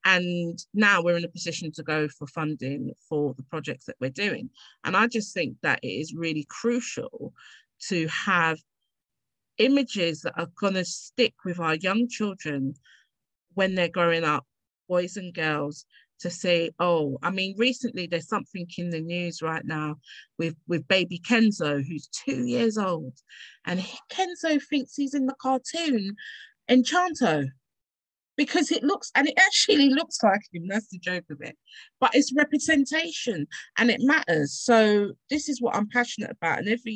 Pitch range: 160-230 Hz